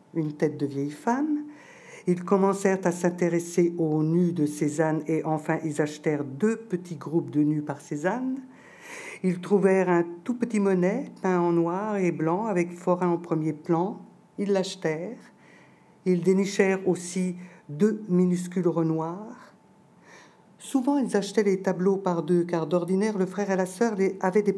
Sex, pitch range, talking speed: female, 150-205 Hz, 155 wpm